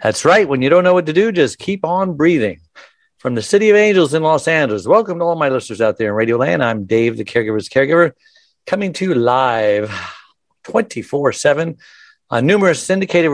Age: 60-79